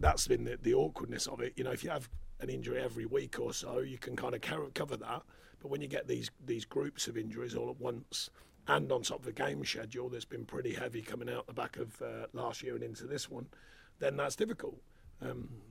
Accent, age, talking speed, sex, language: British, 40-59, 245 wpm, male, English